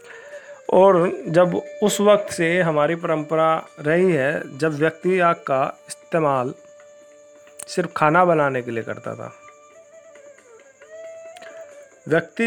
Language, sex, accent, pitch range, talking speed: Hindi, male, native, 150-205 Hz, 105 wpm